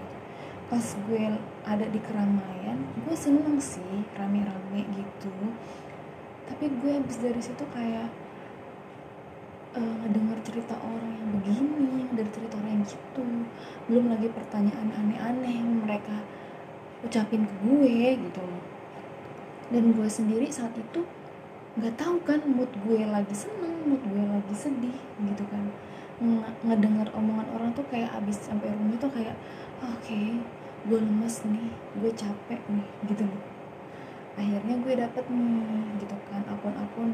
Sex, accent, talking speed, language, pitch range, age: female, native, 130 wpm, Indonesian, 205-235 Hz, 20-39